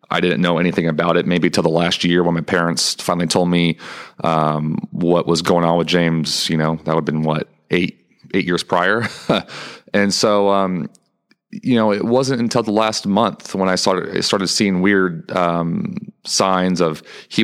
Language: English